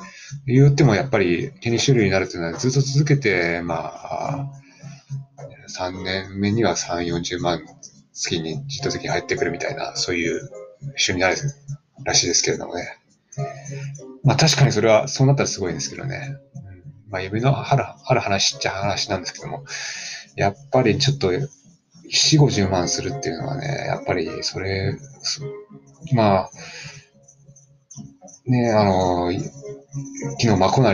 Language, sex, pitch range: Japanese, male, 100-140 Hz